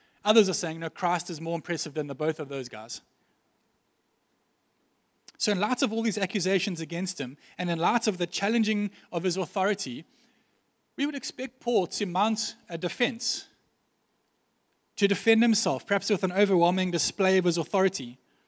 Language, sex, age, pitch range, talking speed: English, male, 30-49, 165-215 Hz, 165 wpm